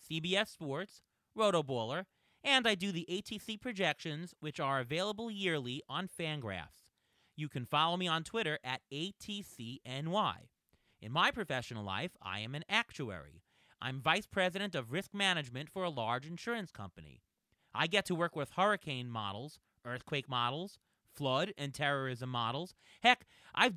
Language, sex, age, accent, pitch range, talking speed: English, male, 30-49, American, 135-195 Hz, 145 wpm